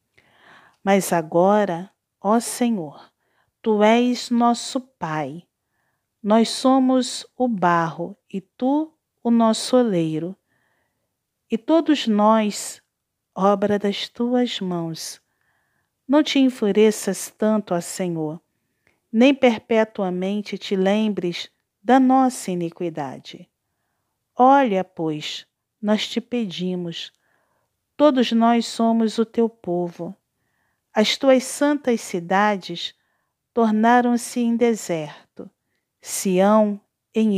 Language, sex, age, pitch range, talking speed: Portuguese, female, 40-59, 185-235 Hz, 90 wpm